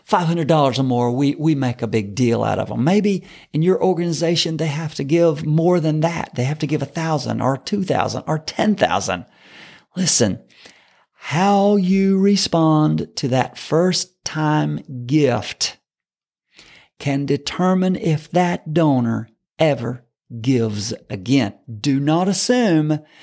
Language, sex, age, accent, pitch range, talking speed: English, male, 50-69, American, 125-175 Hz, 140 wpm